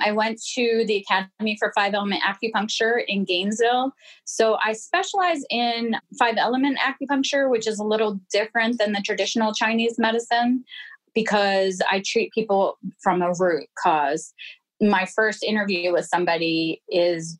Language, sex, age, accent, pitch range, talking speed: English, female, 20-39, American, 175-220 Hz, 145 wpm